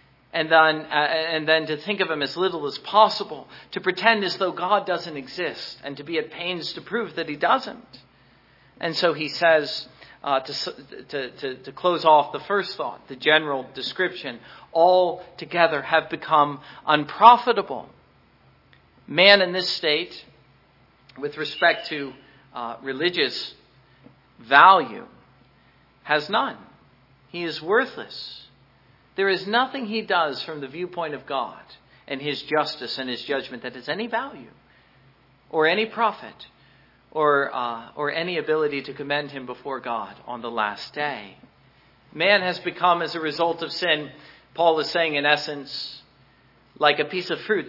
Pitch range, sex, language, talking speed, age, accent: 135-175 Hz, male, English, 150 wpm, 50-69, American